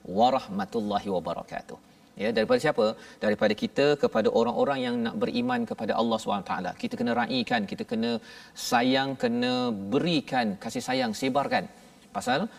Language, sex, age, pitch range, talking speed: Malayalam, male, 40-59, 180-250 Hz, 135 wpm